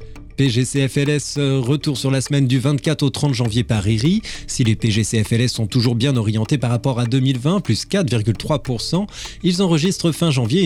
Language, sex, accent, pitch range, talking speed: French, male, French, 115-160 Hz, 165 wpm